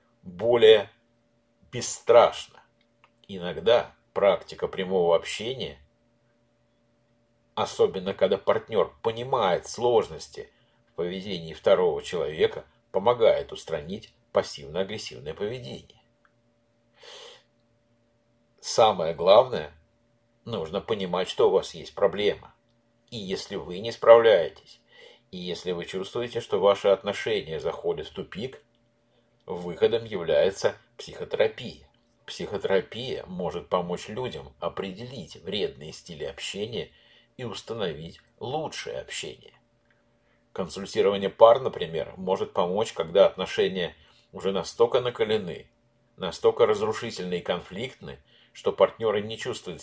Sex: male